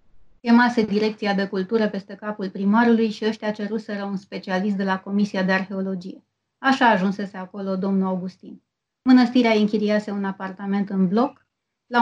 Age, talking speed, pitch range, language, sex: 30-49, 150 wpm, 200-230 Hz, Romanian, female